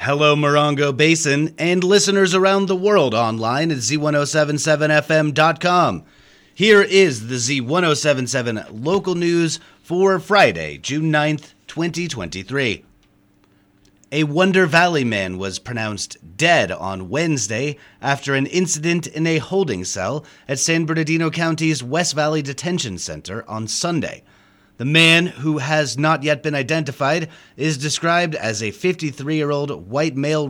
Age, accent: 30-49, American